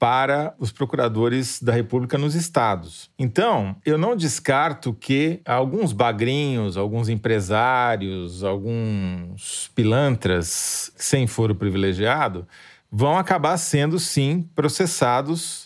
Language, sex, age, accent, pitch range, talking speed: Portuguese, male, 40-59, Brazilian, 115-150 Hz, 100 wpm